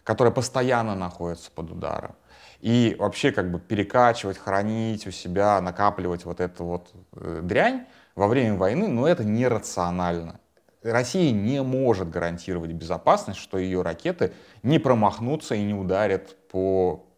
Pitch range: 90-115 Hz